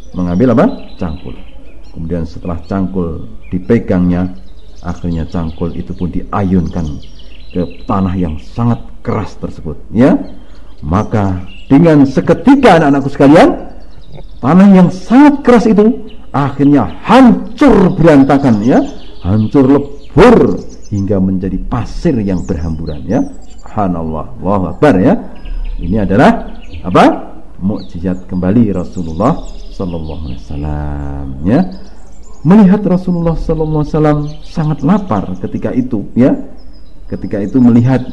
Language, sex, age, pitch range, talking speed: Indonesian, male, 50-69, 85-135 Hz, 100 wpm